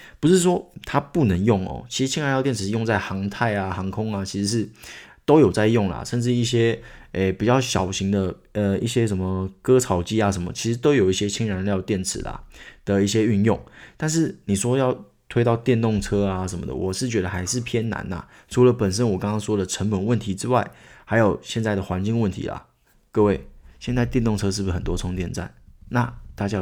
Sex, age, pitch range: male, 20-39, 95-115 Hz